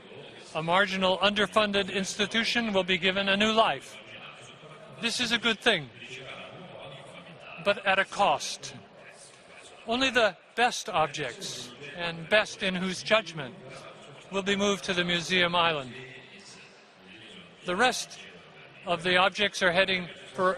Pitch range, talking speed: 170-210 Hz, 125 wpm